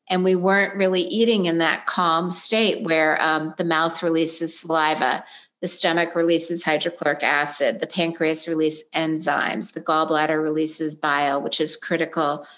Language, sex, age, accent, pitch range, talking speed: English, female, 50-69, American, 160-195 Hz, 150 wpm